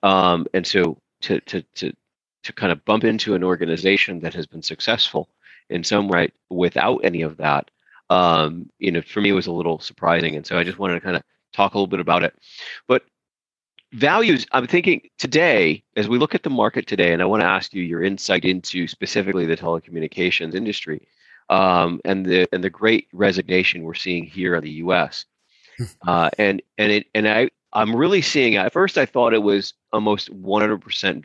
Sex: male